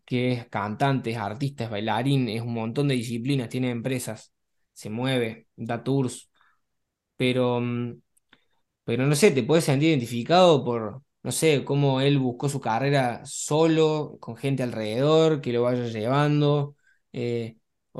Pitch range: 120-145 Hz